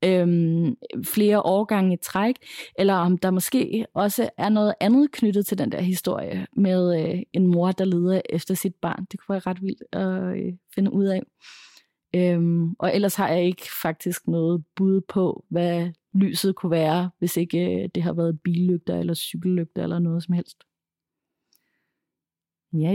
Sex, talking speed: female, 170 wpm